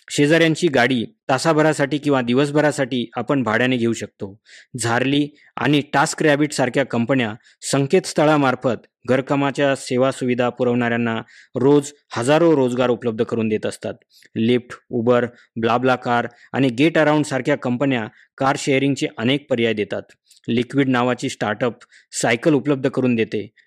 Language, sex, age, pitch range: Marathi, male, 20-39, 120-145 Hz